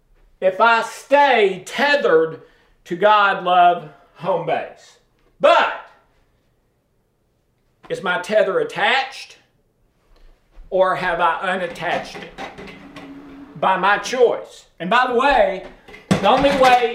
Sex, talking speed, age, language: male, 105 wpm, 50-69, English